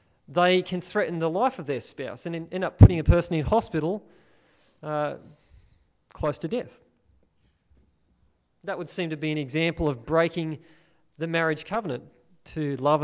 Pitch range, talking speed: 140-185 Hz, 155 wpm